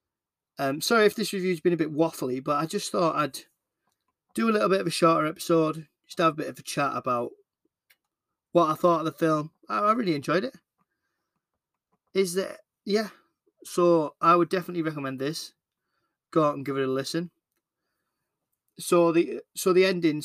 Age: 20-39